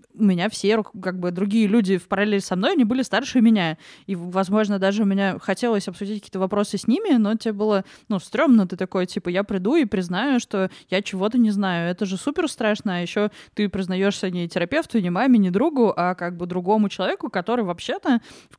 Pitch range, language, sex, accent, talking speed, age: 195-230 Hz, Russian, female, native, 210 wpm, 20-39